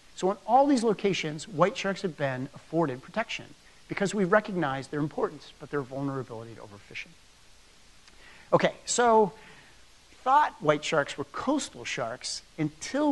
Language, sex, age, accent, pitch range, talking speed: English, male, 50-69, American, 140-200 Hz, 140 wpm